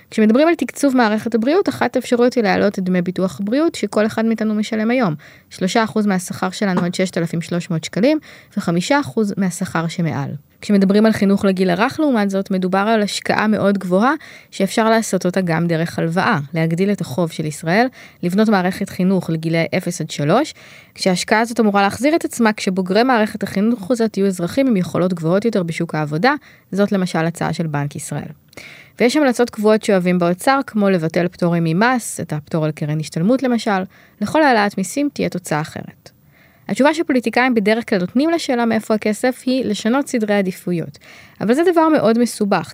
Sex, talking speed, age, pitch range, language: female, 165 wpm, 20-39, 180-240 Hz, Hebrew